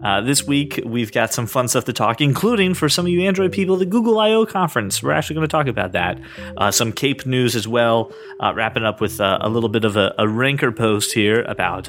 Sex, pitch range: male, 110-155 Hz